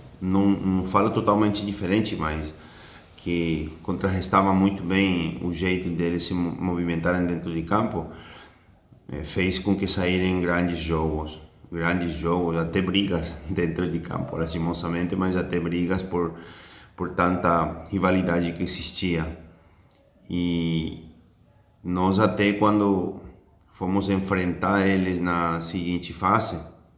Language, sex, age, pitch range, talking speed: Portuguese, male, 30-49, 85-100 Hz, 115 wpm